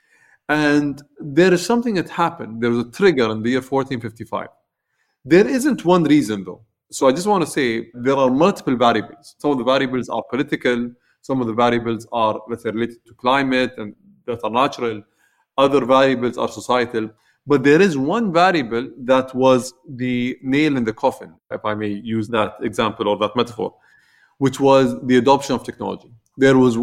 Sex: male